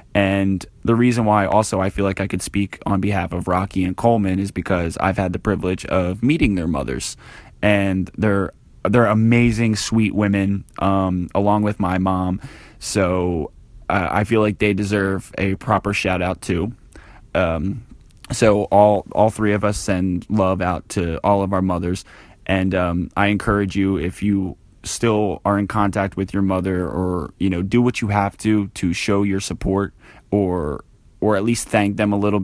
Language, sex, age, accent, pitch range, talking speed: English, male, 20-39, American, 95-105 Hz, 185 wpm